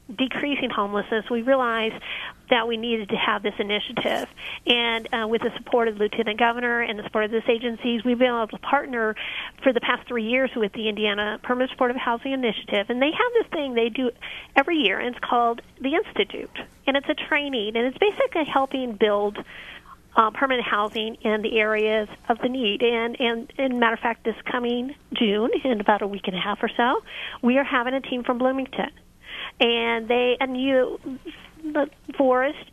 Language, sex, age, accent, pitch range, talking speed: English, female, 40-59, American, 225-265 Hz, 195 wpm